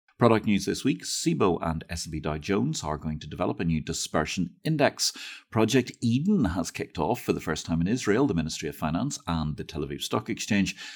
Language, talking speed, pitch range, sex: English, 215 wpm, 80-115 Hz, male